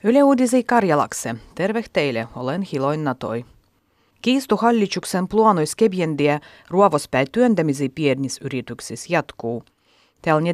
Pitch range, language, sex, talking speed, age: 135-190 Hz, Finnish, female, 85 wpm, 30-49